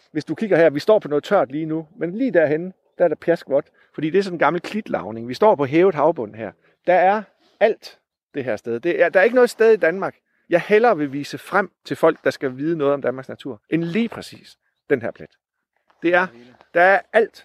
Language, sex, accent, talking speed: Danish, male, native, 245 wpm